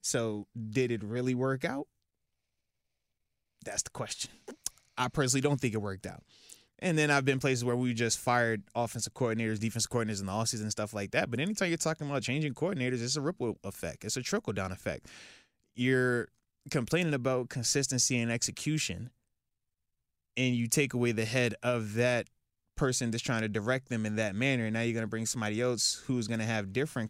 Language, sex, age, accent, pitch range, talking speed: English, male, 20-39, American, 110-130 Hz, 190 wpm